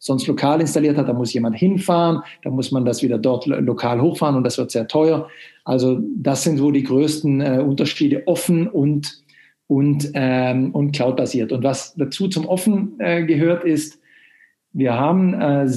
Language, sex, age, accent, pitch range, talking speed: German, male, 50-69, German, 135-180 Hz, 180 wpm